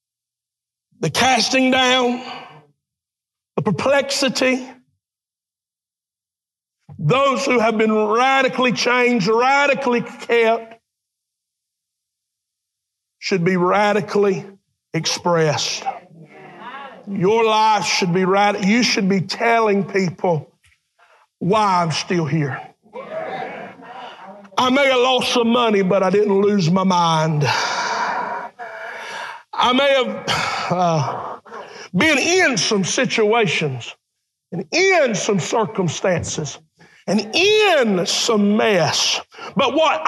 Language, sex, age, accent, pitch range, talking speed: English, male, 60-79, American, 195-305 Hz, 90 wpm